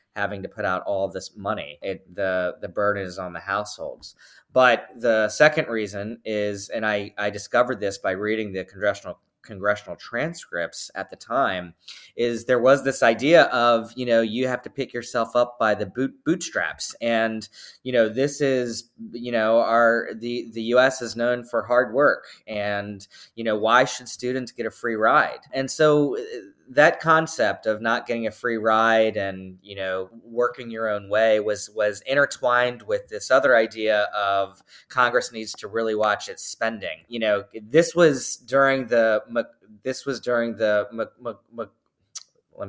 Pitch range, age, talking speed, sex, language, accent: 105-125 Hz, 20-39, 175 wpm, male, English, American